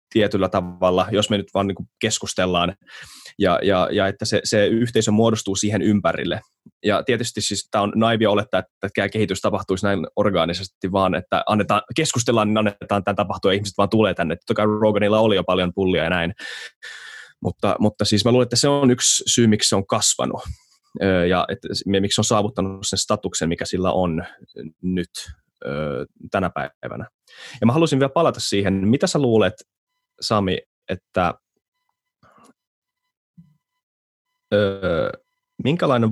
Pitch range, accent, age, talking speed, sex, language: 95-115 Hz, native, 20-39, 155 wpm, male, Finnish